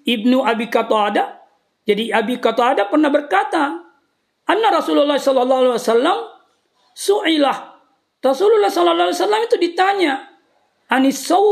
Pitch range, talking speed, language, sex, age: 265-395 Hz, 90 wpm, Indonesian, female, 40-59